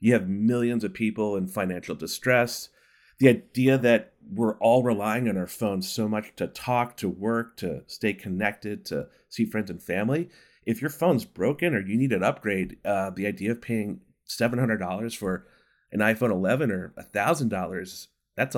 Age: 30-49